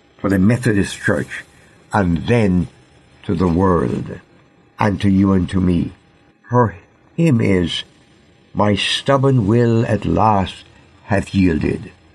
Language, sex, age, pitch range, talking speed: English, male, 60-79, 95-125 Hz, 125 wpm